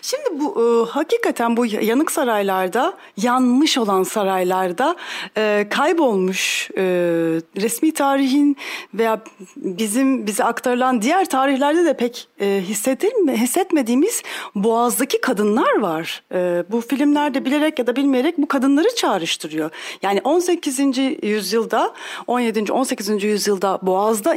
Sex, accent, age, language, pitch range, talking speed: female, native, 40-59, Turkish, 205-295 Hz, 110 wpm